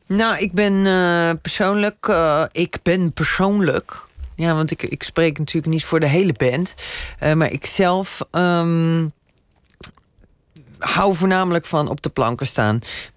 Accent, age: Dutch, 40-59